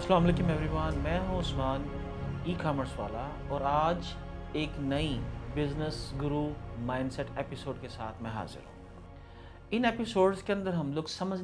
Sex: male